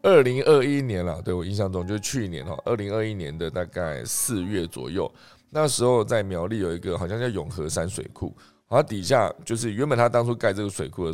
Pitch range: 85-110 Hz